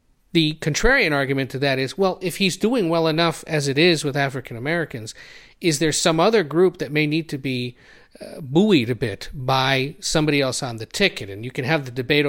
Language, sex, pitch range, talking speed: English, male, 125-150 Hz, 215 wpm